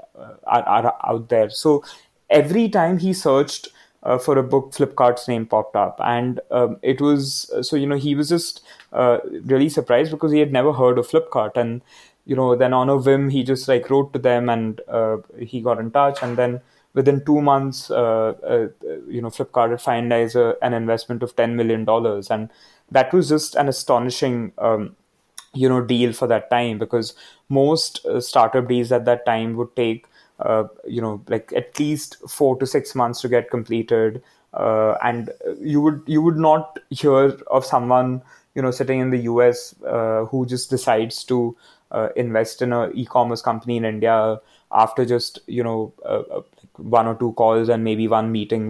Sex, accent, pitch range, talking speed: male, Indian, 115-140 Hz, 185 wpm